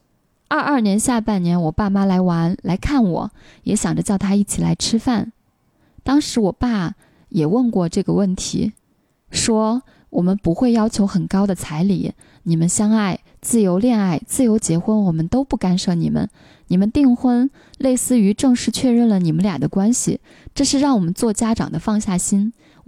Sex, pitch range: female, 180-230 Hz